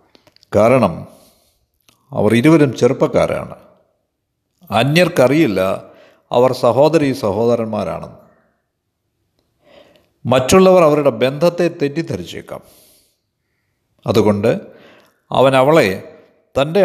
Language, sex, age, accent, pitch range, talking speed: Malayalam, male, 50-69, native, 115-160 Hz, 55 wpm